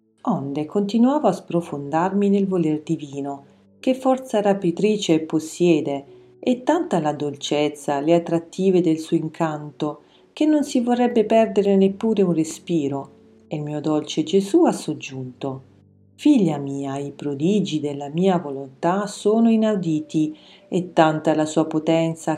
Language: Italian